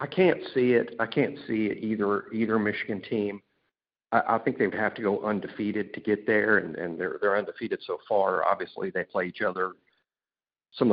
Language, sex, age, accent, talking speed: English, male, 50-69, American, 205 wpm